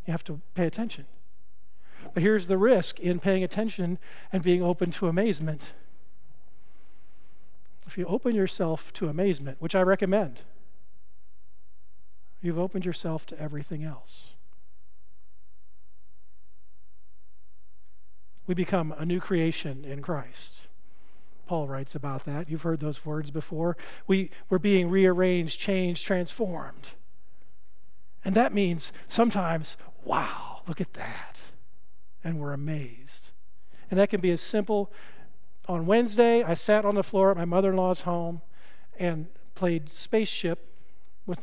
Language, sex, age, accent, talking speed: English, male, 50-69, American, 125 wpm